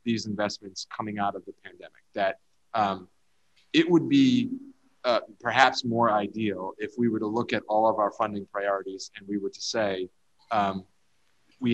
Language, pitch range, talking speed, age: English, 100-115 Hz, 175 wpm, 30-49